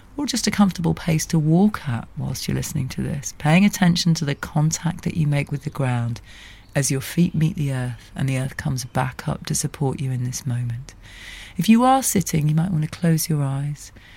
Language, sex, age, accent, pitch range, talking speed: English, female, 30-49, British, 120-170 Hz, 225 wpm